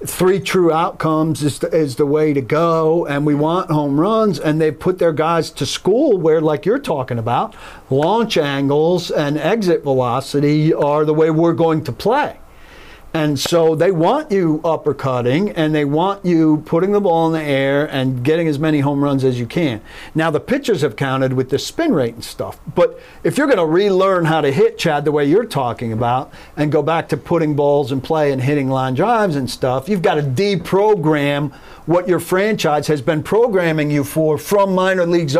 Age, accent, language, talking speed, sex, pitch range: 50-69, American, English, 200 wpm, male, 140-180 Hz